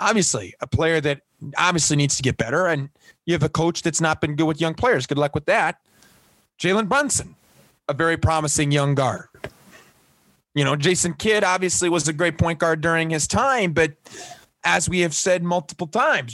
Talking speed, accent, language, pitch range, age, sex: 190 wpm, American, English, 140-180 Hz, 30-49, male